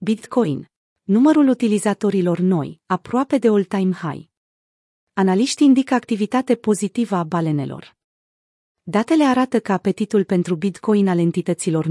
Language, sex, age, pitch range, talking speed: Romanian, female, 30-49, 180-225 Hz, 110 wpm